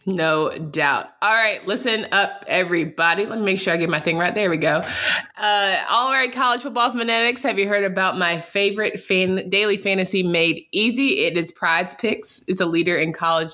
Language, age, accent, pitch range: English, 20-39, American, 170-230 Hz